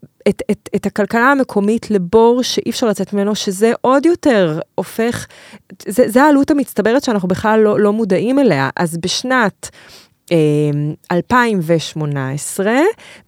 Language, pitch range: English, 160-230 Hz